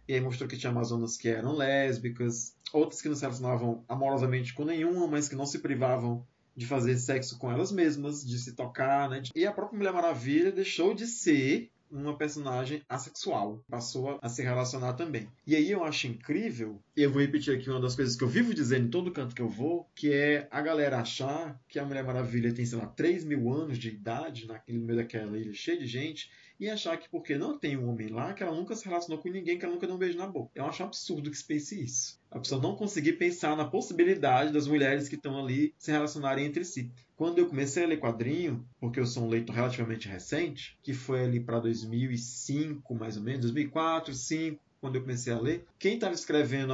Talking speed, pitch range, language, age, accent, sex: 225 wpm, 125-160 Hz, Portuguese, 20-39, Brazilian, male